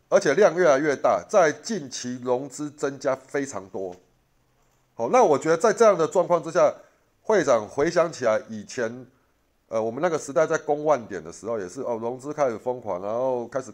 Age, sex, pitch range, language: 30-49, male, 120-170 Hz, Chinese